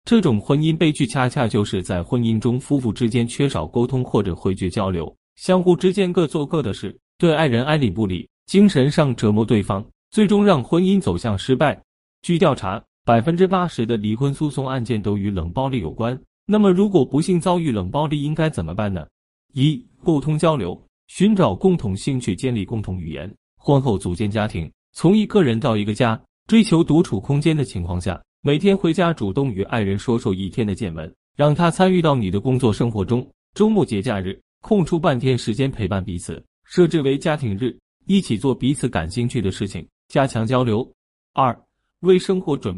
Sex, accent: male, native